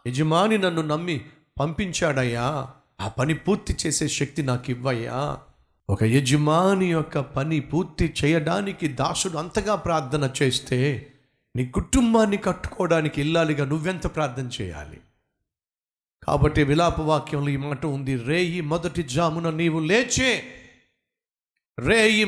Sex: male